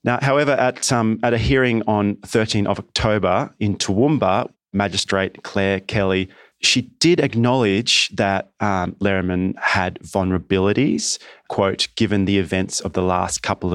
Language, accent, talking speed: English, Australian, 135 wpm